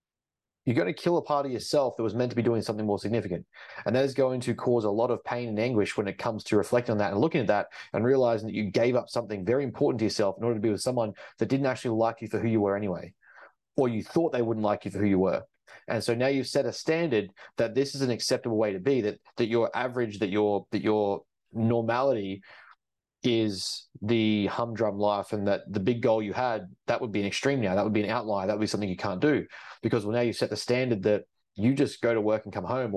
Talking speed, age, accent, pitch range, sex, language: 265 wpm, 20-39, Australian, 105-120 Hz, male, English